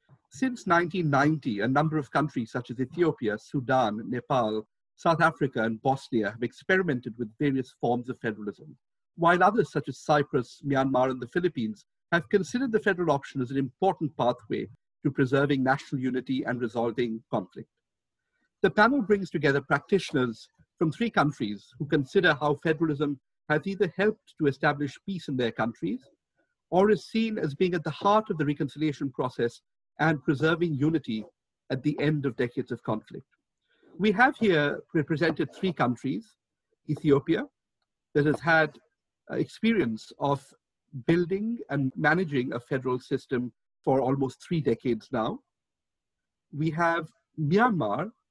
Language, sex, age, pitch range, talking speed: English, male, 50-69, 130-180 Hz, 145 wpm